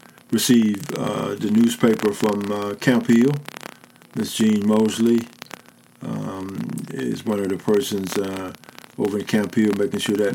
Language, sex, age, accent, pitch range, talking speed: English, male, 50-69, American, 100-120 Hz, 145 wpm